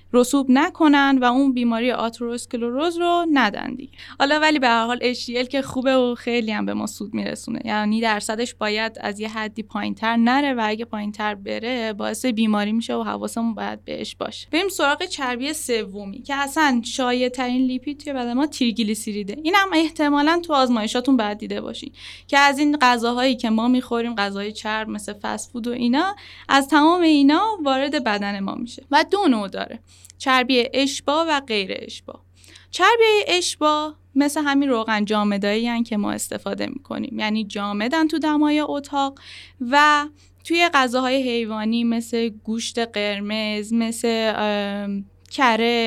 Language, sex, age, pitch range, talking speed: Persian, female, 10-29, 215-280 Hz, 150 wpm